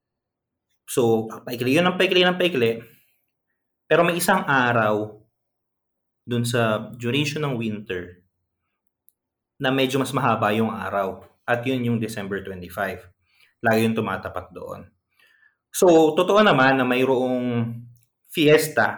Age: 20-39